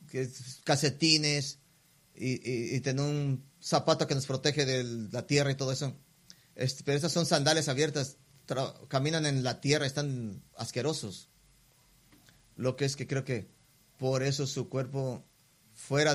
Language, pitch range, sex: English, 130-160 Hz, male